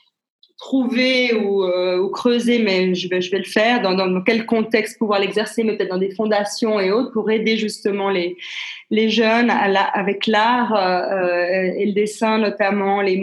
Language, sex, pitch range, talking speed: English, female, 195-225 Hz, 185 wpm